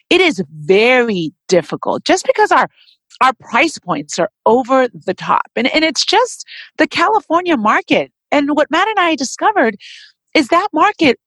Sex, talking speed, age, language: female, 160 wpm, 40-59, English